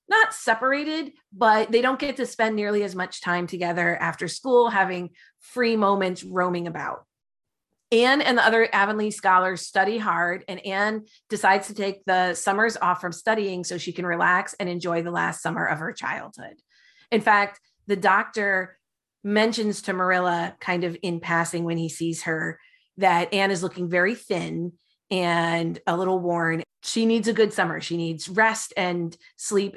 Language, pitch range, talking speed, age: English, 175-220 Hz, 170 wpm, 30-49